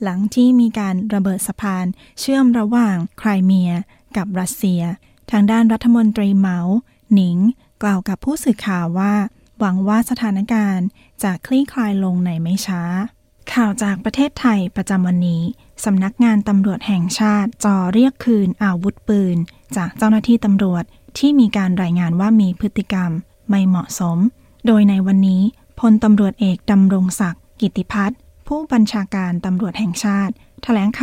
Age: 20-39